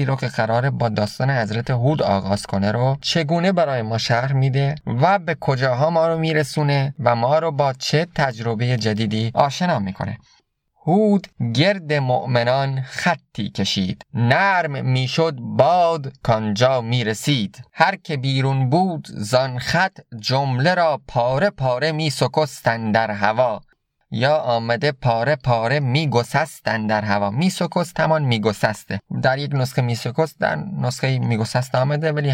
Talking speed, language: 140 wpm, Persian